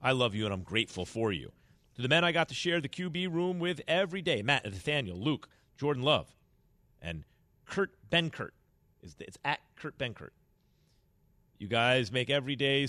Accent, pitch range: American, 90-140 Hz